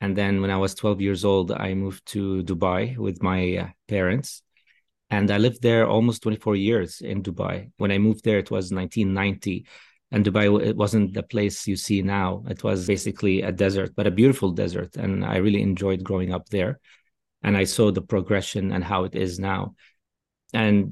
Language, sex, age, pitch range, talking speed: English, male, 30-49, 95-110 Hz, 190 wpm